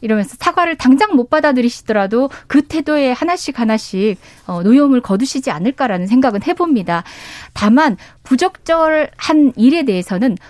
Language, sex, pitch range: Korean, female, 215-300 Hz